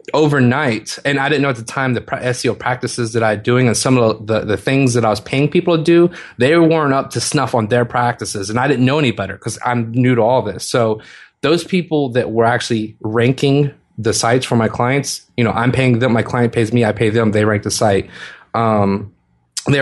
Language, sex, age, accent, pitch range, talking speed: English, male, 20-39, American, 110-130 Hz, 235 wpm